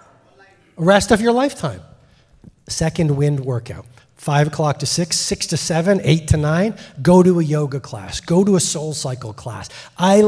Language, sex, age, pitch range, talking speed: English, male, 30-49, 125-175 Hz, 175 wpm